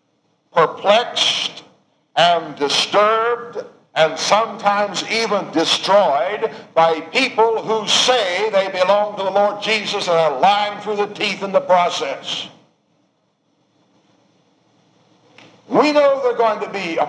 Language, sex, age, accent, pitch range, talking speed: English, male, 60-79, American, 170-230 Hz, 115 wpm